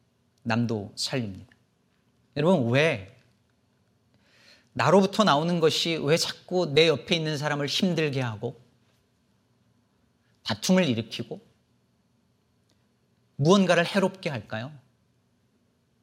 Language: Korean